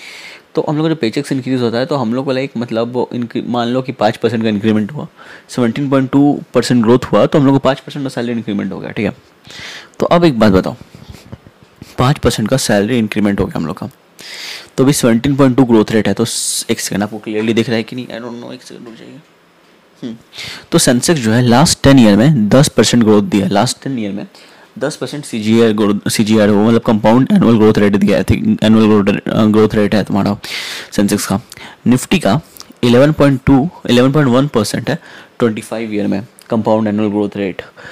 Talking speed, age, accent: 195 wpm, 10-29, native